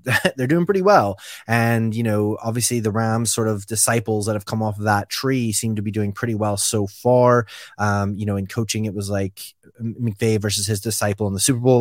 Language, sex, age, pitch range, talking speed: English, male, 20-39, 100-115 Hz, 225 wpm